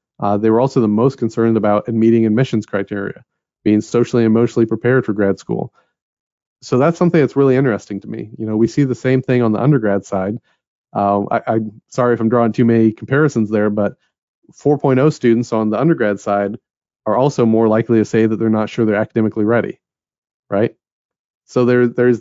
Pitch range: 110-125 Hz